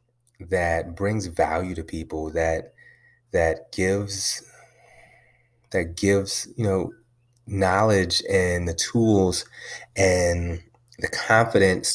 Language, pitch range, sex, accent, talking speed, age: English, 90-120 Hz, male, American, 95 wpm, 30-49